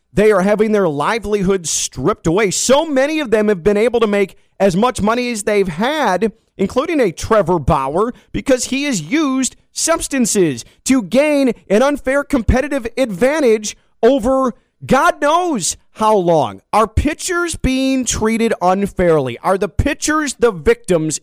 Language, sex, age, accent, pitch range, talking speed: English, male, 30-49, American, 150-240 Hz, 145 wpm